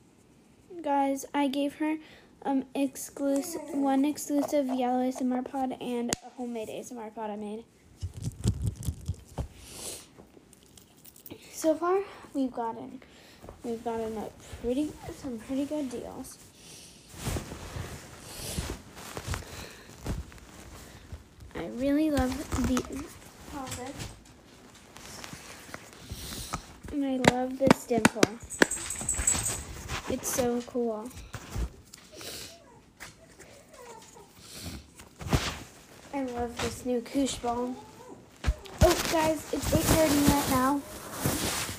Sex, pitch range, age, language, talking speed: female, 235-285 Hz, 10-29, English, 80 wpm